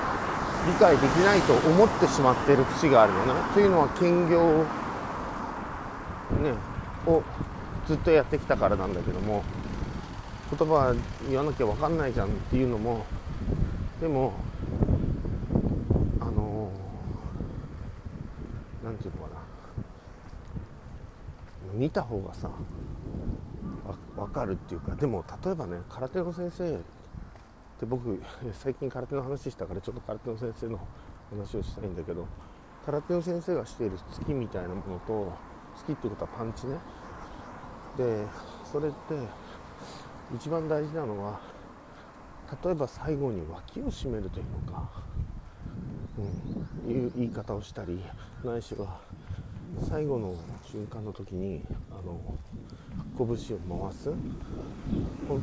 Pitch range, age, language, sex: 95-140 Hz, 40-59, Japanese, male